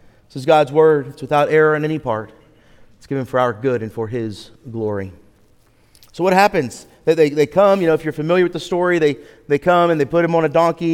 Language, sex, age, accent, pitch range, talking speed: English, male, 30-49, American, 120-165 Hz, 240 wpm